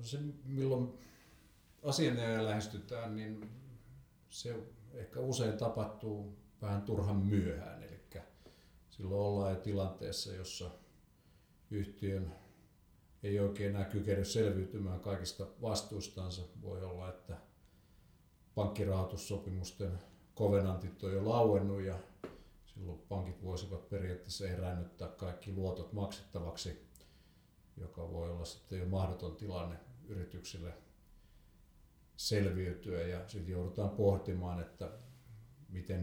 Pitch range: 90-105 Hz